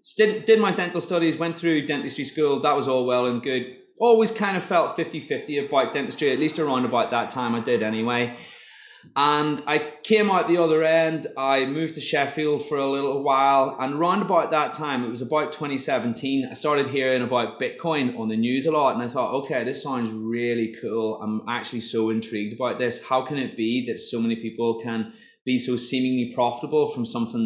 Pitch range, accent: 120-155 Hz, British